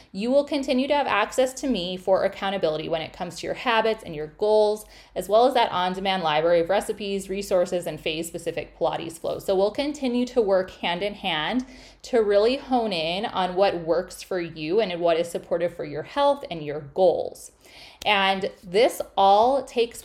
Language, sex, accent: English, female, American